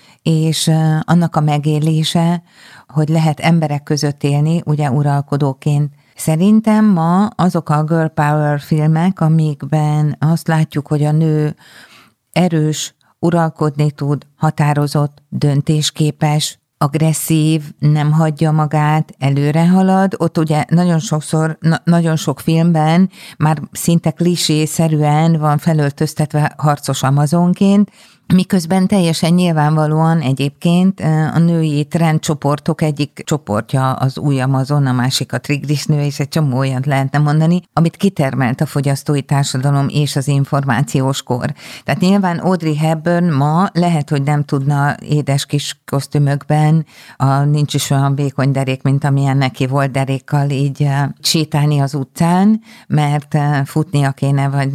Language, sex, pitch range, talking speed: Hungarian, female, 140-160 Hz, 120 wpm